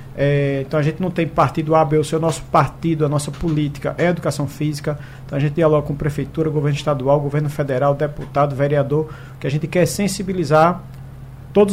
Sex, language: male, Portuguese